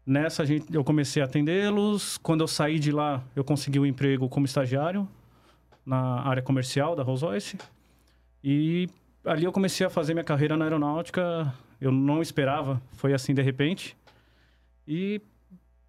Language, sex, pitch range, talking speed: Portuguese, male, 130-165 Hz, 150 wpm